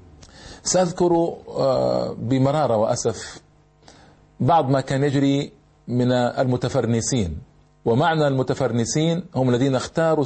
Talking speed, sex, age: 80 wpm, male, 40-59